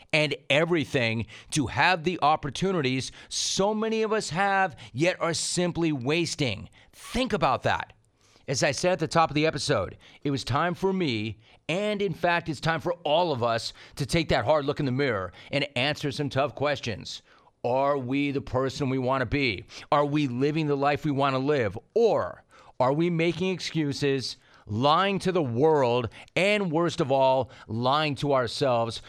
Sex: male